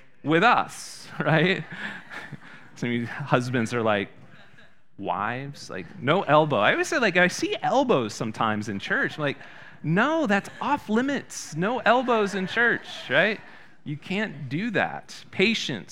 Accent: American